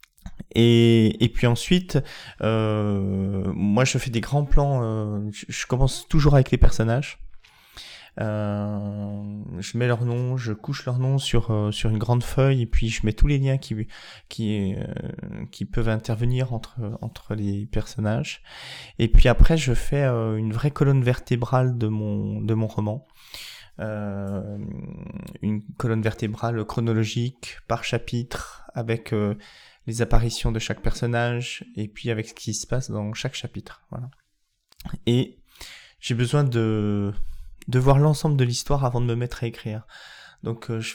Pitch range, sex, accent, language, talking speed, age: 110-125 Hz, male, French, French, 155 wpm, 20-39